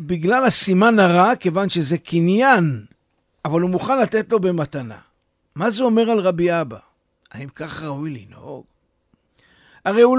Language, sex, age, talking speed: Hebrew, male, 60-79, 145 wpm